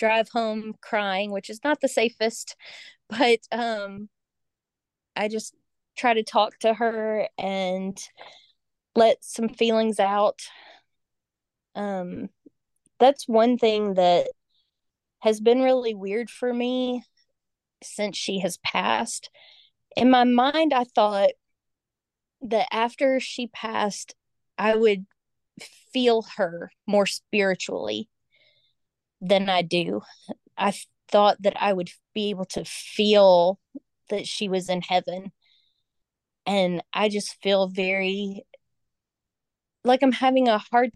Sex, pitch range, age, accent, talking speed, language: female, 190-230 Hz, 20-39, American, 115 wpm, English